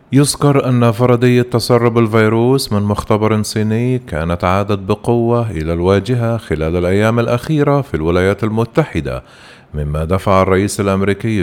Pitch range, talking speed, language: 90-120 Hz, 120 wpm, Arabic